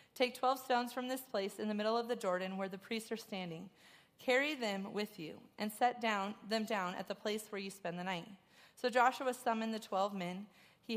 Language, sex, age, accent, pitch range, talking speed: English, female, 30-49, American, 195-245 Hz, 225 wpm